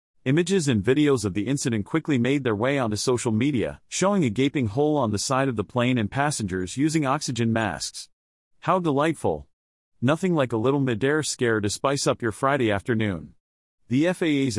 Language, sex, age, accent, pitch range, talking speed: English, male, 40-59, American, 110-150 Hz, 180 wpm